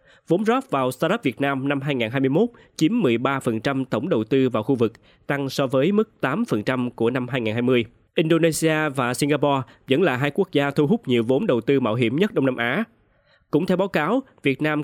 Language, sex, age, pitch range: Vietnamese, male, 20-39, 125-155 Hz